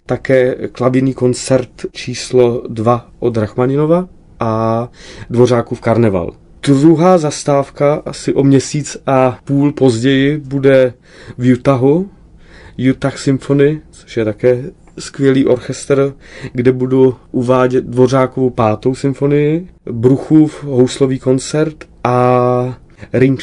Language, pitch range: Czech, 125-140 Hz